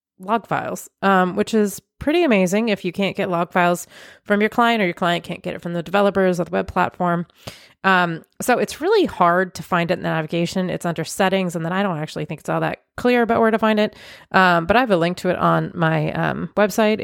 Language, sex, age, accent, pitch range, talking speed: English, female, 30-49, American, 165-205 Hz, 245 wpm